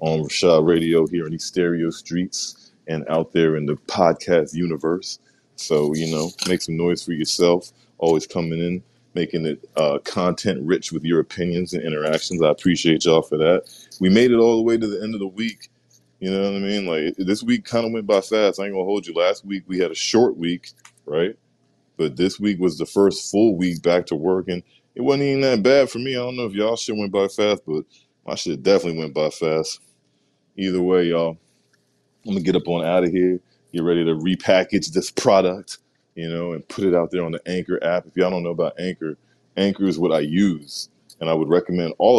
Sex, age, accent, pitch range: male, 20-39, American, 80-100 Hz